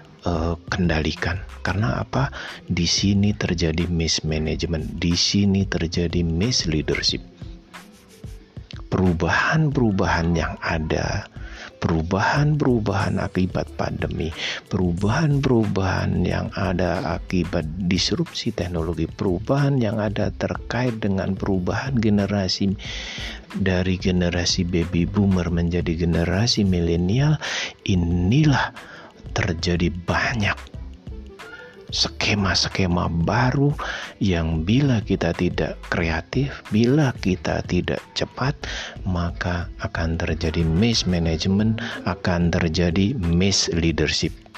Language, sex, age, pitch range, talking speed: Indonesian, male, 50-69, 85-115 Hz, 80 wpm